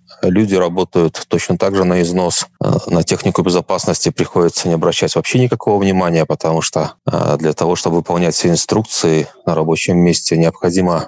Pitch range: 85-105 Hz